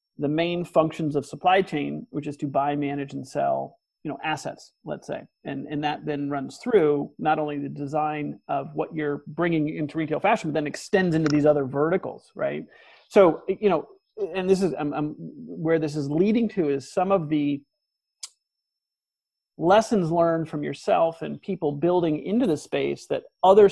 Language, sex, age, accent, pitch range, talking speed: English, male, 40-59, American, 145-175 Hz, 180 wpm